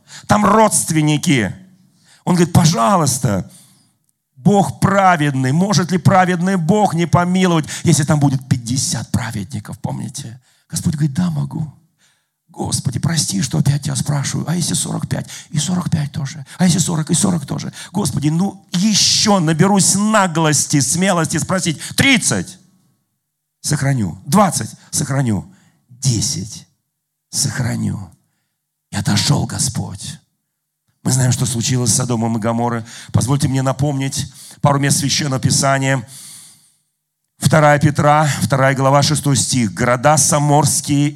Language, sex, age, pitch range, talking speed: Russian, male, 40-59, 140-165 Hz, 115 wpm